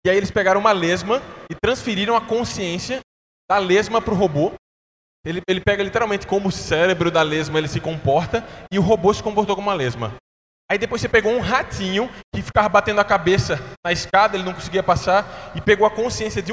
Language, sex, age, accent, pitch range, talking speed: Portuguese, male, 20-39, Brazilian, 175-225 Hz, 205 wpm